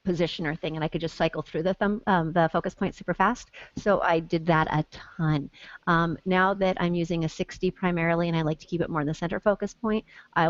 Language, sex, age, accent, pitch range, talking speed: English, female, 40-59, American, 160-200 Hz, 245 wpm